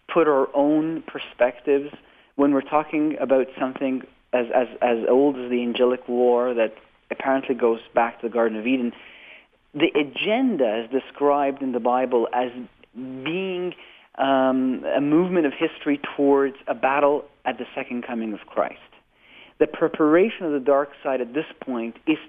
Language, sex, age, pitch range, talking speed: English, male, 40-59, 125-150 Hz, 160 wpm